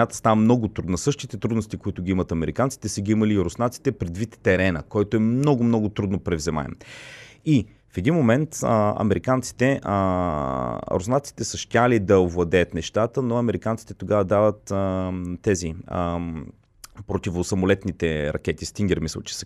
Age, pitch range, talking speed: 30-49, 90-120 Hz, 145 wpm